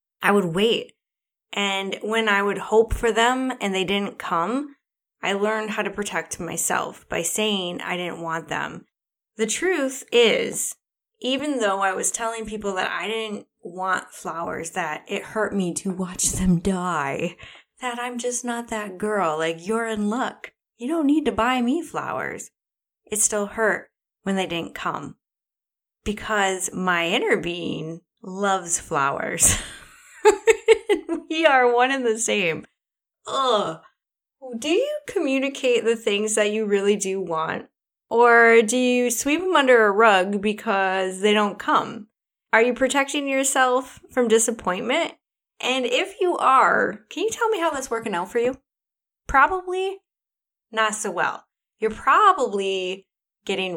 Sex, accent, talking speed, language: female, American, 150 wpm, English